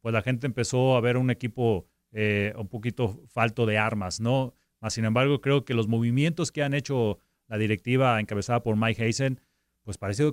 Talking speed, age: 190 wpm, 30-49